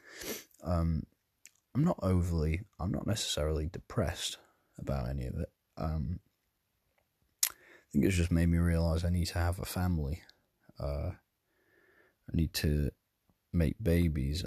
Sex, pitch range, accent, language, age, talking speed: male, 80-95 Hz, British, English, 30-49, 135 wpm